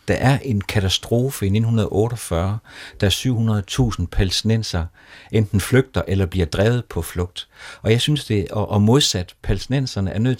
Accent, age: native, 60-79